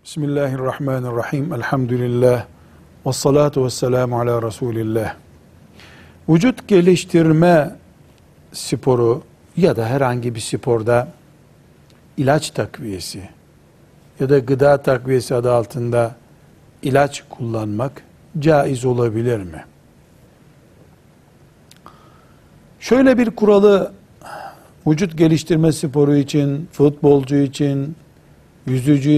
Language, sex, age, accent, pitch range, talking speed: Turkish, male, 60-79, native, 115-155 Hz, 75 wpm